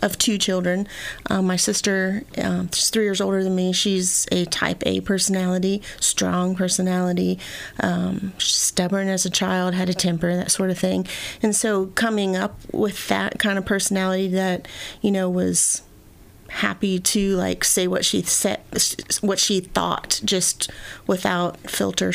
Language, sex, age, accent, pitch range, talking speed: English, female, 30-49, American, 180-215 Hz, 155 wpm